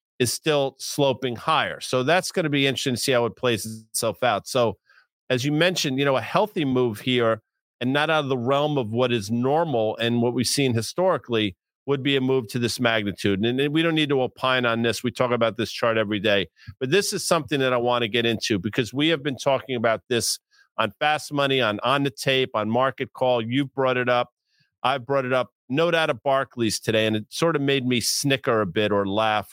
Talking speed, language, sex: 235 wpm, English, male